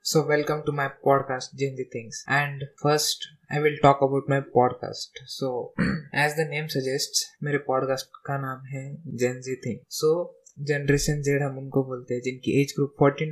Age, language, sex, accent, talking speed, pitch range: 20-39, Hindi, male, native, 180 wpm, 130-145 Hz